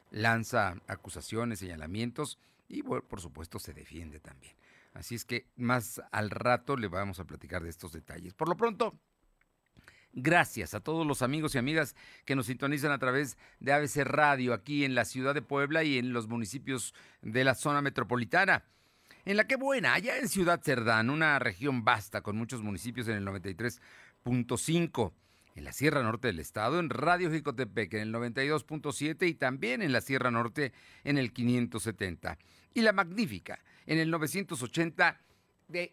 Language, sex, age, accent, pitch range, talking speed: Spanish, male, 50-69, Mexican, 110-150 Hz, 165 wpm